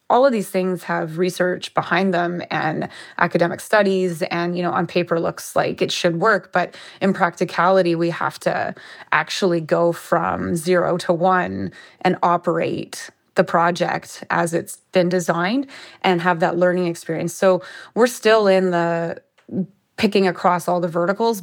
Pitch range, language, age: 175-190 Hz, English, 20-39